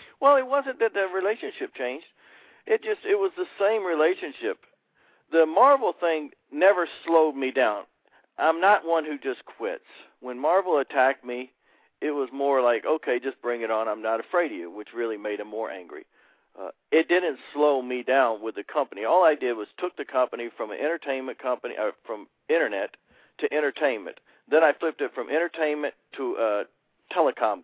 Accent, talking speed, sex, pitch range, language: American, 180 wpm, male, 125-180 Hz, English